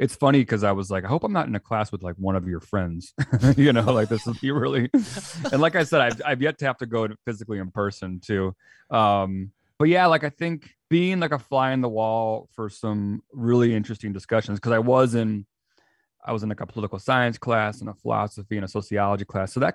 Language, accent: English, American